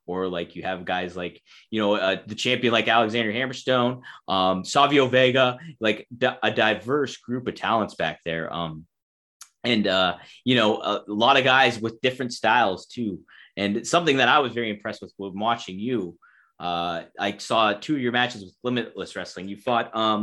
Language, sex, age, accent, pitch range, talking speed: English, male, 20-39, American, 110-180 Hz, 180 wpm